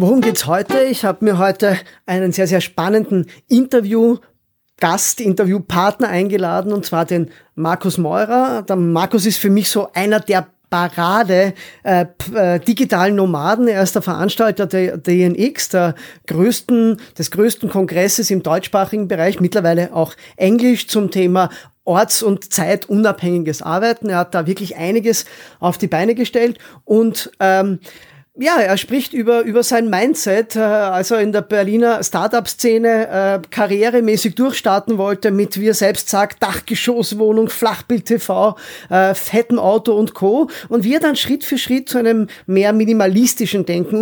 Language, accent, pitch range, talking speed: German, German, 185-230 Hz, 145 wpm